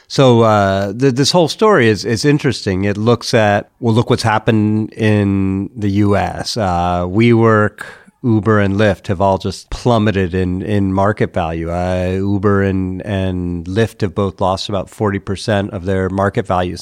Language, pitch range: English, 95-110 Hz